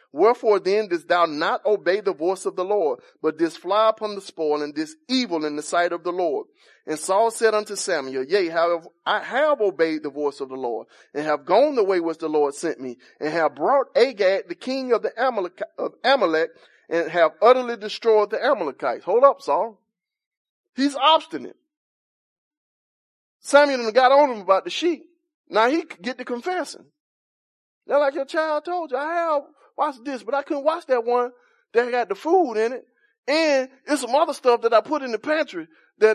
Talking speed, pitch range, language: 195 wpm, 200-300 Hz, English